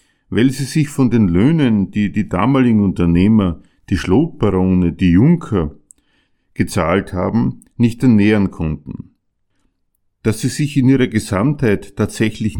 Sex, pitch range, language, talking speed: male, 95-130 Hz, German, 125 wpm